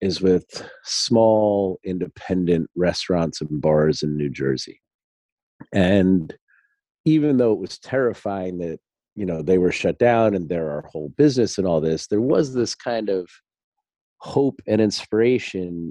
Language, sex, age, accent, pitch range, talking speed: English, male, 40-59, American, 95-125 Hz, 145 wpm